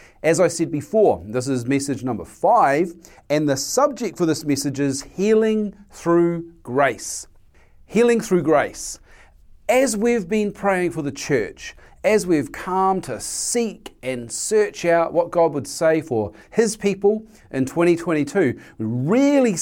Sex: male